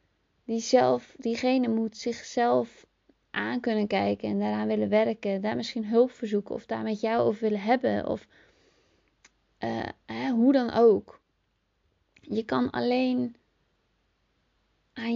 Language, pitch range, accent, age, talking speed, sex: Dutch, 190-230 Hz, Dutch, 20-39, 135 wpm, female